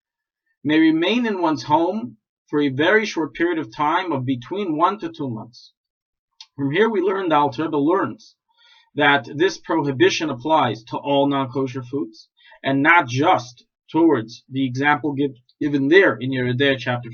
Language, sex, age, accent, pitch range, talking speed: English, male, 40-59, American, 135-225 Hz, 155 wpm